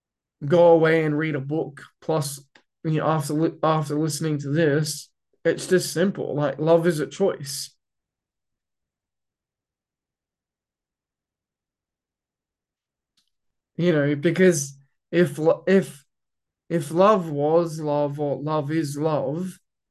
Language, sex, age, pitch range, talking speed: English, male, 20-39, 145-175 Hz, 105 wpm